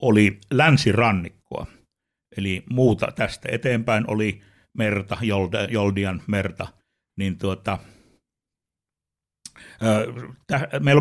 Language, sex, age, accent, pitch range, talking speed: Finnish, male, 60-79, native, 100-125 Hz, 65 wpm